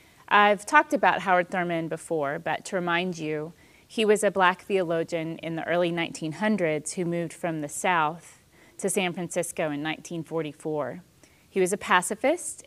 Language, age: English, 30-49